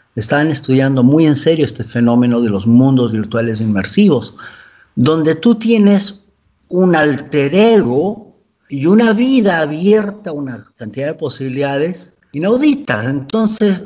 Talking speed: 120 wpm